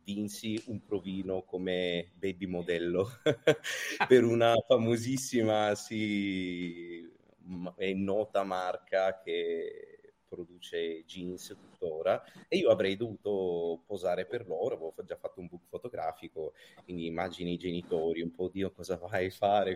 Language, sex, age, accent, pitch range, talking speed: Italian, male, 30-49, native, 90-120 Hz, 120 wpm